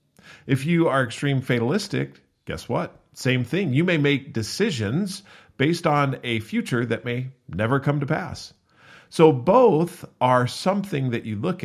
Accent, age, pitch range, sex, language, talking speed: American, 40-59, 105-150 Hz, male, English, 155 wpm